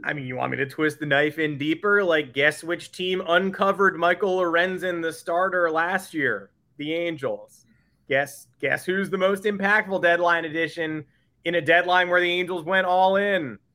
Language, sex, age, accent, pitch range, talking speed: English, male, 20-39, American, 155-200 Hz, 180 wpm